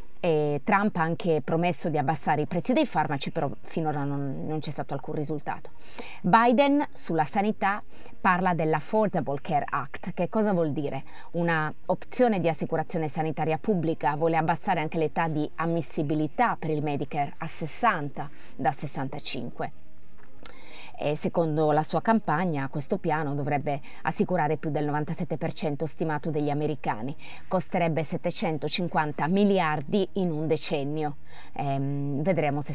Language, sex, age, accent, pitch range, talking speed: Italian, female, 30-49, native, 150-175 Hz, 130 wpm